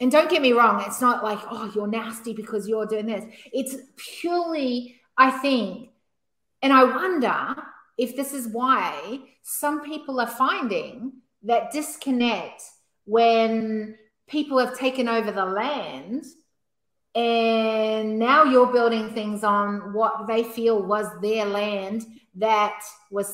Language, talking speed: English, 135 wpm